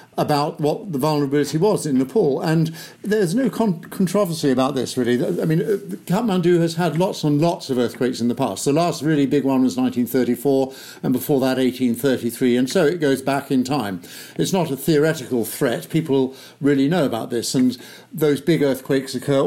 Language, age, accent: English, 50-69, British